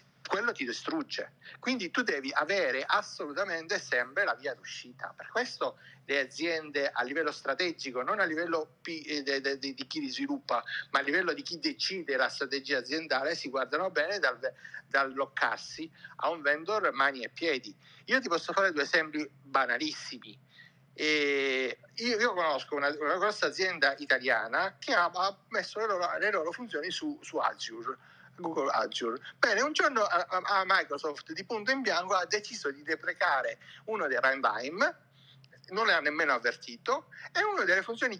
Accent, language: native, Italian